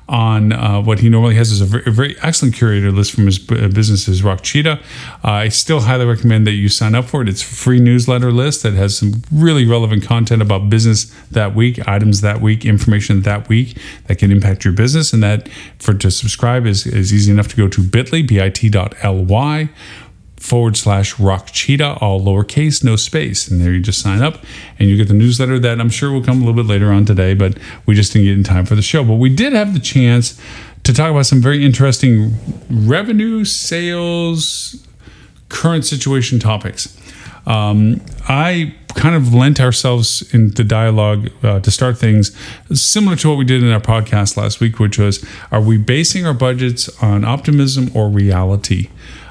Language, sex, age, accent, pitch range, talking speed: English, male, 40-59, American, 105-130 Hz, 200 wpm